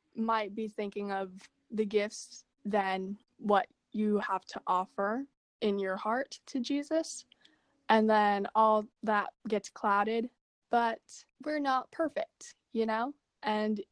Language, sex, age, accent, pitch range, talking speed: English, female, 10-29, American, 200-245 Hz, 130 wpm